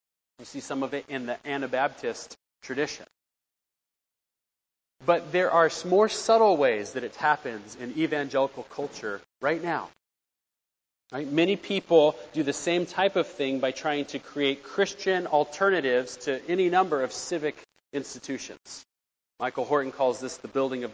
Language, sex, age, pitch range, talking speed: English, male, 30-49, 135-175 Hz, 150 wpm